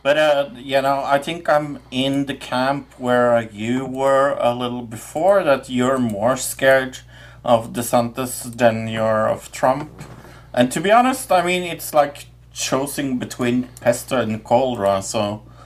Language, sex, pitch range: English, male, 105-130 Hz